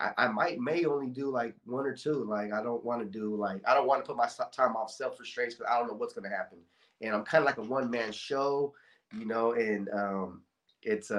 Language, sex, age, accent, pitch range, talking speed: English, male, 30-49, American, 105-125 Hz, 245 wpm